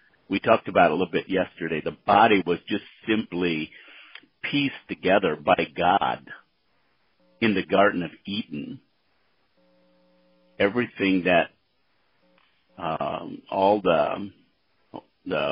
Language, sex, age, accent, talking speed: English, male, 50-69, American, 110 wpm